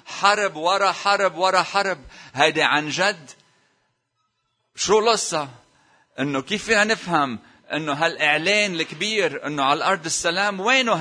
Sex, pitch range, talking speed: male, 105-160 Hz, 120 wpm